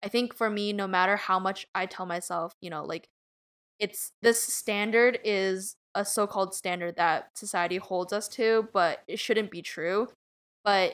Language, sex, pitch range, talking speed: English, female, 180-215 Hz, 180 wpm